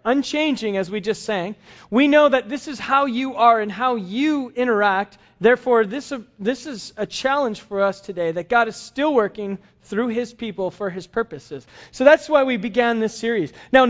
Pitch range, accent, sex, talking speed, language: 195-260 Hz, American, male, 190 wpm, English